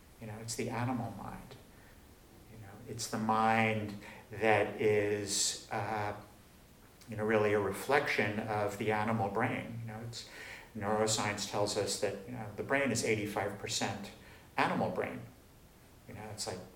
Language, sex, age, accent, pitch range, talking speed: English, male, 50-69, American, 105-115 Hz, 155 wpm